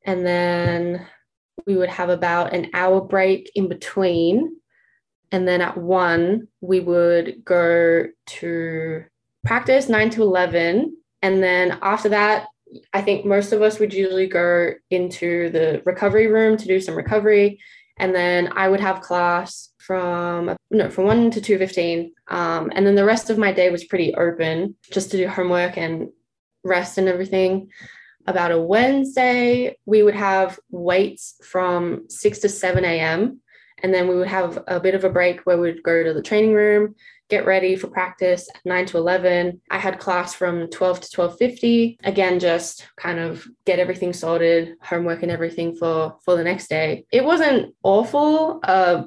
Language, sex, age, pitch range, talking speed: English, female, 20-39, 175-195 Hz, 170 wpm